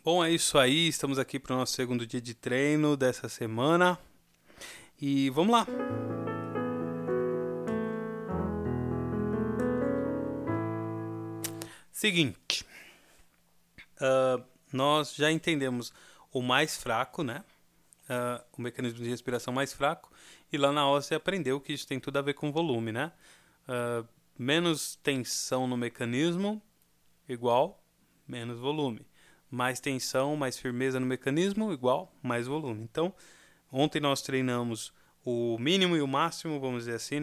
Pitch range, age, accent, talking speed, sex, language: 125-155 Hz, 20-39, Brazilian, 125 wpm, male, Portuguese